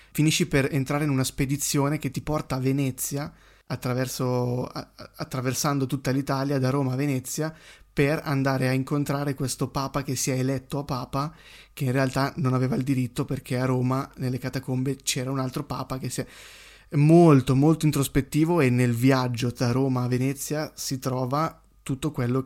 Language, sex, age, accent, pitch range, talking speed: Italian, male, 20-39, native, 130-140 Hz, 170 wpm